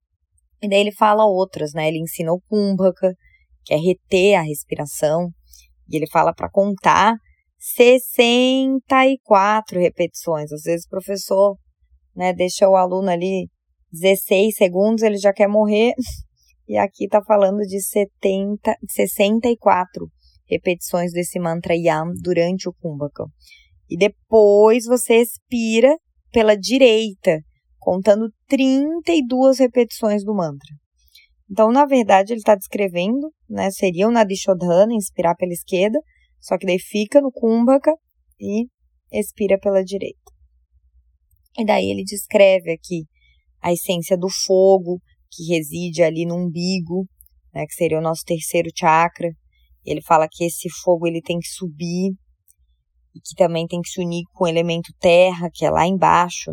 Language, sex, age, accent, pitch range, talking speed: Portuguese, female, 20-39, Brazilian, 160-205 Hz, 140 wpm